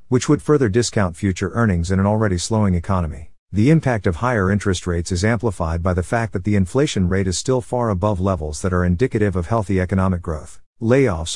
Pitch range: 90-115 Hz